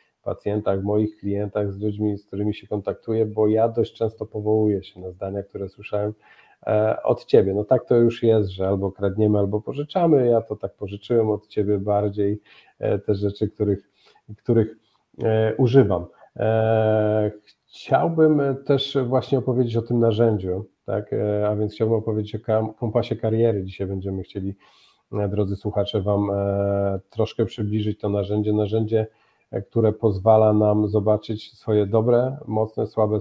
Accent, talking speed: native, 140 wpm